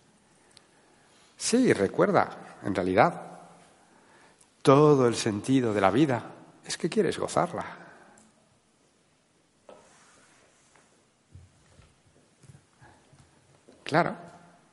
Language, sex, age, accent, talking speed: Spanish, male, 60-79, Spanish, 60 wpm